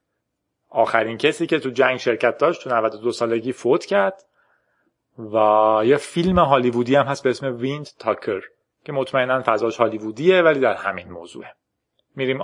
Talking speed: 150 wpm